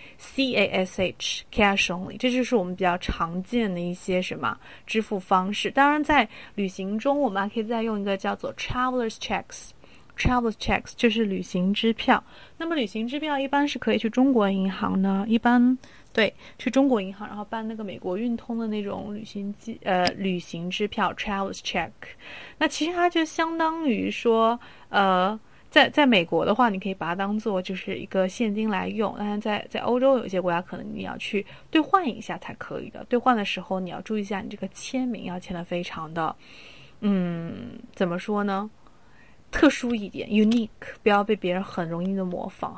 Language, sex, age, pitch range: Chinese, female, 20-39, 195-240 Hz